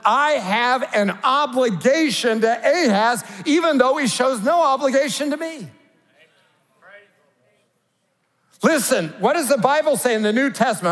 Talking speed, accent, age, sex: 130 wpm, American, 50-69, male